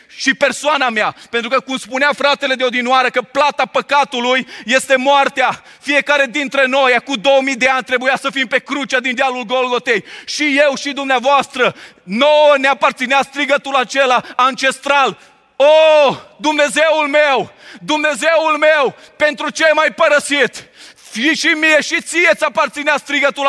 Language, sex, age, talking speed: Romanian, male, 30-49, 155 wpm